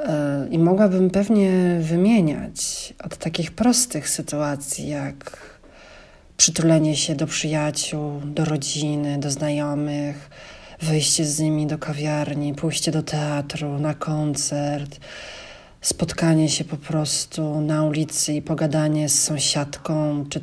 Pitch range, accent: 150-180 Hz, native